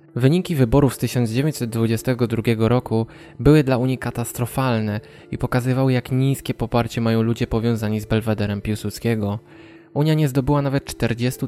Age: 20-39